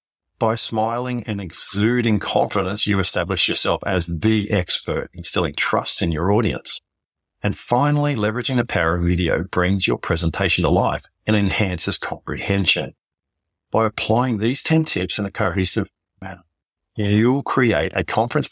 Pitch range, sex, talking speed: 90-110 Hz, male, 145 wpm